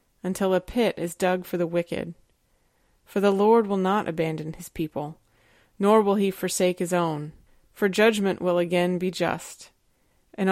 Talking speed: 165 wpm